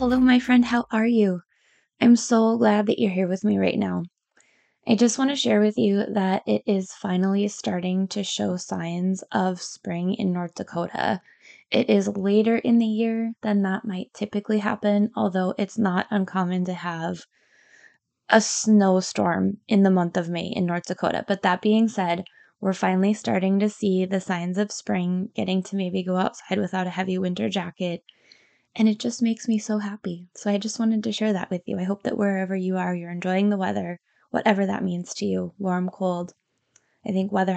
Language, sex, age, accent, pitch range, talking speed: English, female, 20-39, American, 185-215 Hz, 195 wpm